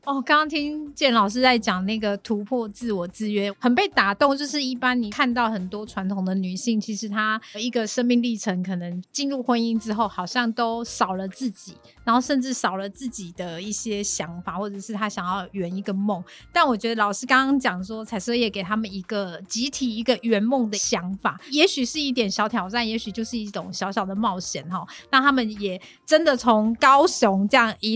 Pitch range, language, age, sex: 195-245 Hz, Chinese, 30-49, female